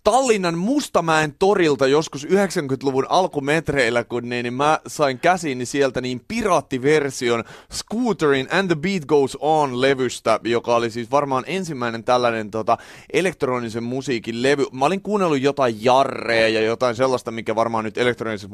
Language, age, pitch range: Finnish, 30-49, 110-140 Hz